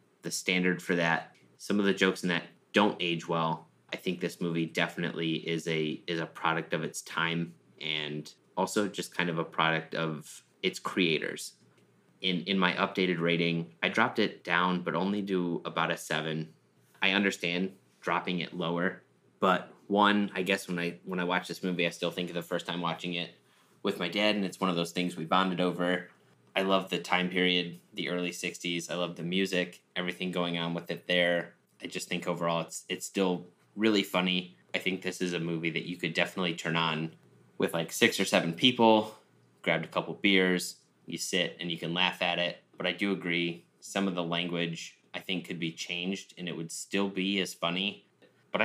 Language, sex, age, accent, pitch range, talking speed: English, male, 20-39, American, 85-95 Hz, 205 wpm